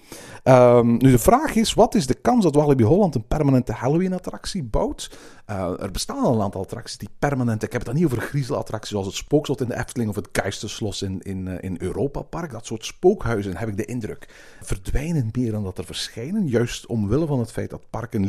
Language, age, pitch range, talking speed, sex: Dutch, 40-59, 105-150 Hz, 220 wpm, male